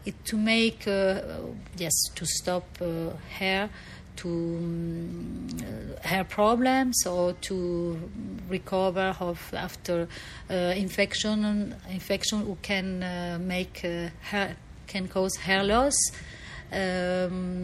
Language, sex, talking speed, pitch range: English, female, 110 wpm, 180-215 Hz